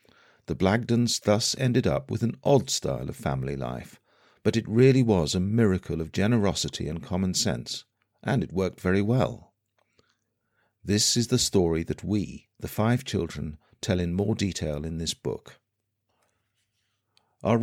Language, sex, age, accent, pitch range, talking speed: English, male, 50-69, British, 85-115 Hz, 155 wpm